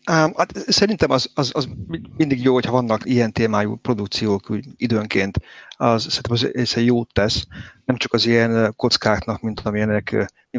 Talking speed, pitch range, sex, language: 145 wpm, 105-125 Hz, male, Hungarian